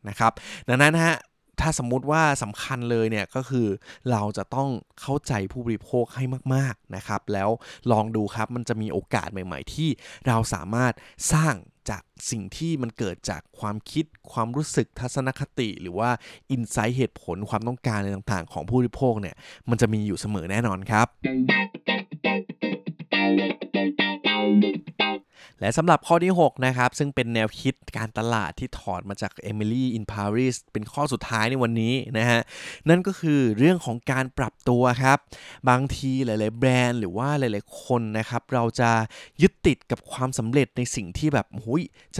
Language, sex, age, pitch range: Thai, male, 20-39, 110-135 Hz